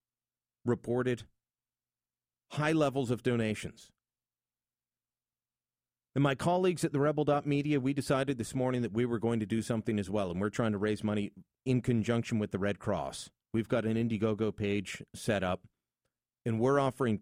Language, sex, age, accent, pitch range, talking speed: English, male, 40-59, American, 100-135 Hz, 160 wpm